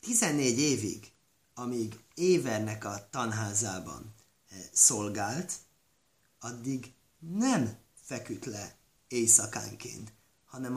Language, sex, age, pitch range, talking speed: Hungarian, male, 30-49, 110-155 Hz, 70 wpm